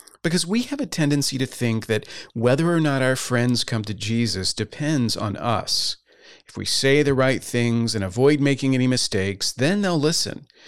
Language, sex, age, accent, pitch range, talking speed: English, male, 40-59, American, 110-155 Hz, 185 wpm